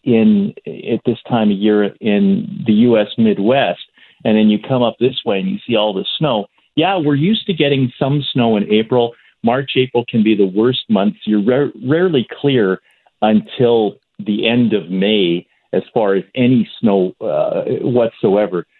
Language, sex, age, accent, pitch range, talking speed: English, male, 40-59, American, 95-135 Hz, 170 wpm